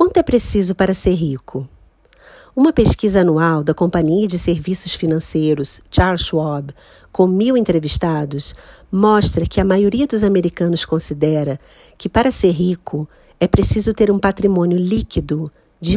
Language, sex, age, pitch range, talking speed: Portuguese, female, 50-69, 165-210 Hz, 140 wpm